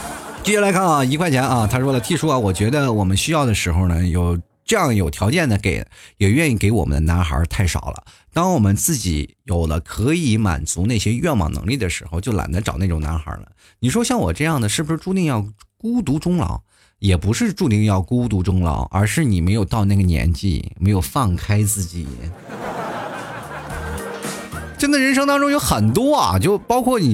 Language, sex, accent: Chinese, male, native